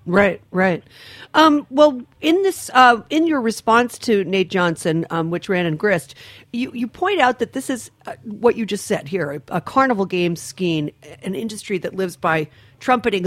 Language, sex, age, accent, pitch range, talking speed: English, female, 40-59, American, 160-220 Hz, 190 wpm